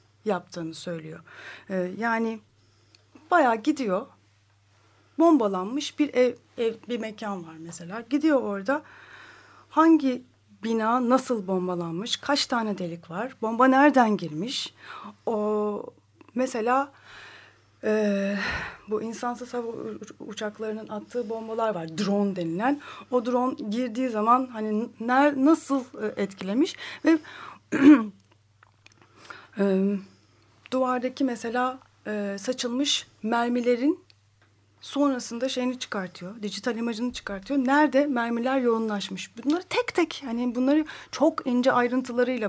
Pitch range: 195-265 Hz